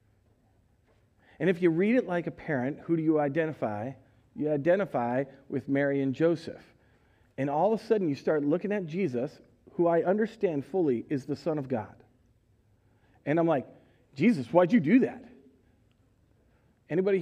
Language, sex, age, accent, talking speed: English, male, 40-59, American, 160 wpm